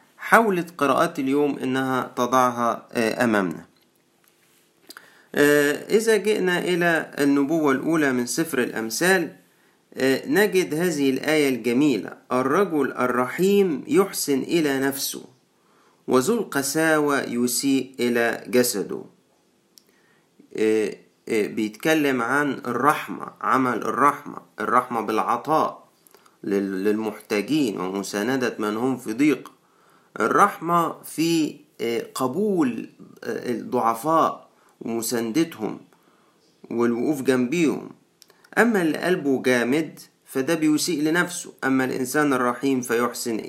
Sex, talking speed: male, 80 wpm